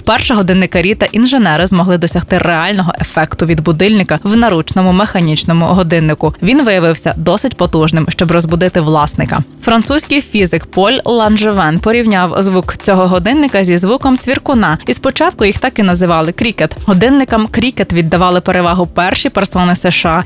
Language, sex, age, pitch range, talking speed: Ukrainian, female, 20-39, 170-215 Hz, 135 wpm